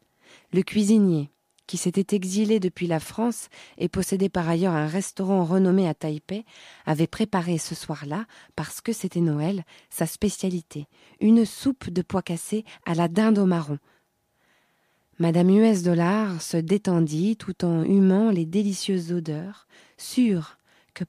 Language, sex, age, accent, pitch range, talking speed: English, female, 20-39, French, 175-220 Hz, 140 wpm